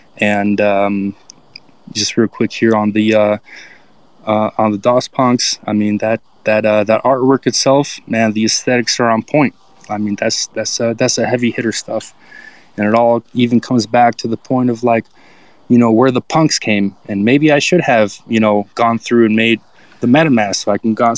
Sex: male